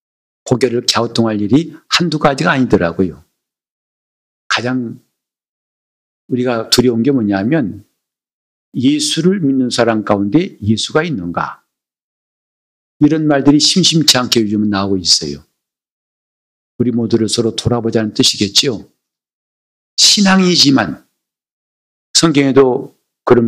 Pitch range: 105-155 Hz